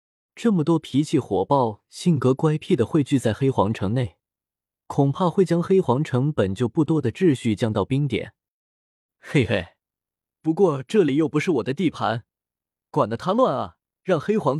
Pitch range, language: 105-165 Hz, Chinese